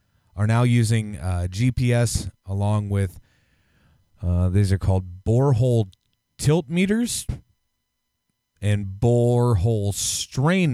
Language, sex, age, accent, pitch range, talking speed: English, male, 30-49, American, 95-120 Hz, 95 wpm